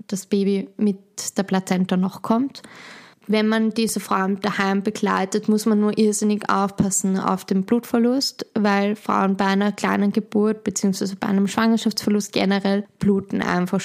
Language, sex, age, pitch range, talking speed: German, female, 20-39, 195-215 Hz, 145 wpm